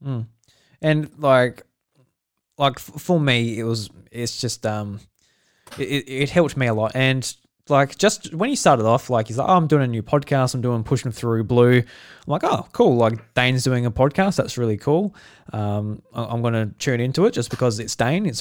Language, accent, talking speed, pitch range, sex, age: English, Australian, 200 wpm, 120-145 Hz, male, 20-39